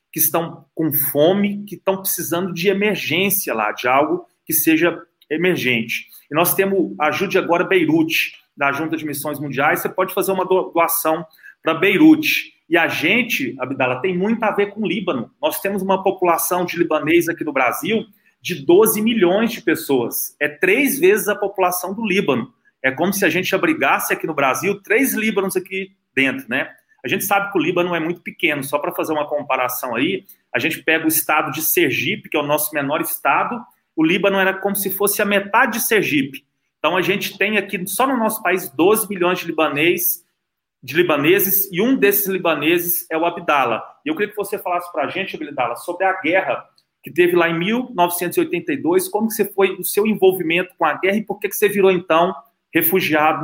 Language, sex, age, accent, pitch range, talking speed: Portuguese, male, 30-49, Brazilian, 160-200 Hz, 195 wpm